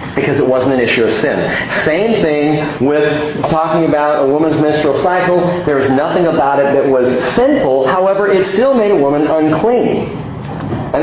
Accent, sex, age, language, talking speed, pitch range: American, male, 40-59, English, 175 wpm, 135-180 Hz